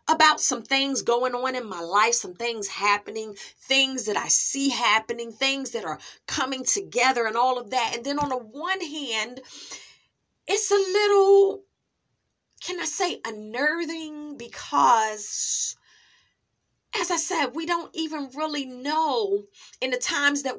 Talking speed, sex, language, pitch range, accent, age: 150 wpm, female, English, 235-345 Hz, American, 30-49